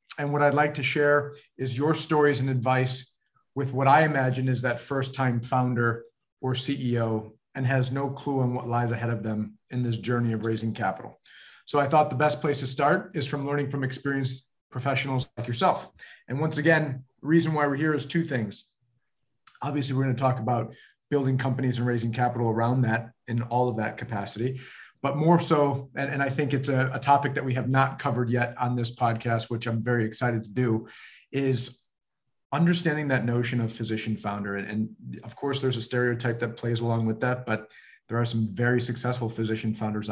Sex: male